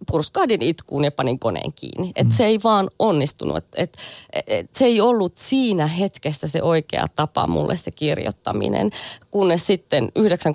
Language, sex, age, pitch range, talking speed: Finnish, female, 30-49, 145-195 Hz, 165 wpm